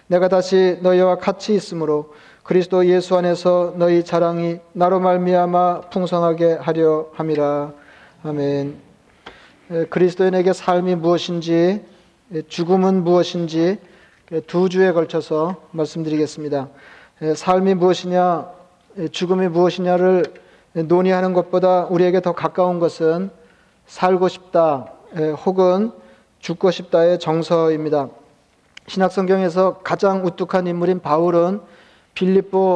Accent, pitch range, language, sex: native, 165-185 Hz, Korean, male